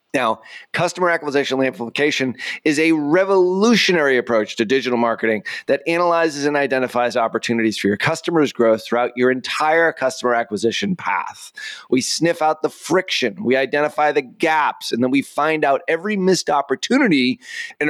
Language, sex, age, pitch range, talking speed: English, male, 30-49, 120-160 Hz, 150 wpm